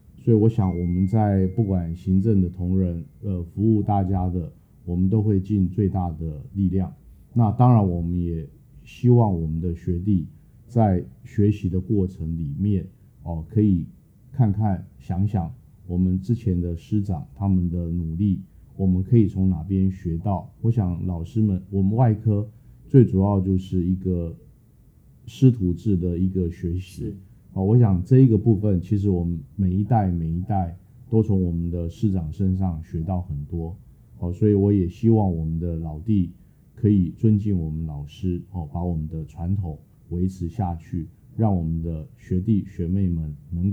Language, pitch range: Chinese, 85-105 Hz